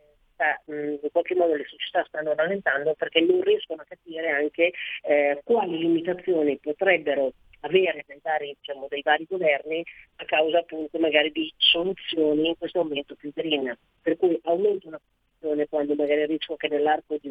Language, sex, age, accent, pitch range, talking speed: Italian, female, 30-49, native, 150-180 Hz, 155 wpm